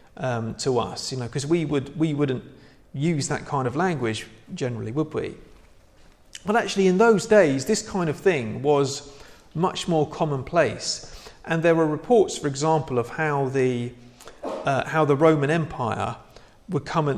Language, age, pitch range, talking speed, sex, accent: English, 40-59, 130-165 Hz, 165 wpm, male, British